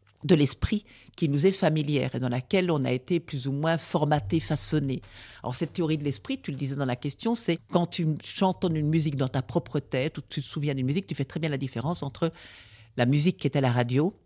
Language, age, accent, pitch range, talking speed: French, 50-69, French, 125-165 Hz, 245 wpm